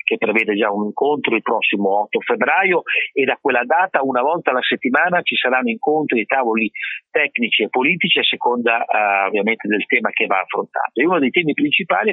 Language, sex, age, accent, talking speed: Italian, male, 40-59, native, 190 wpm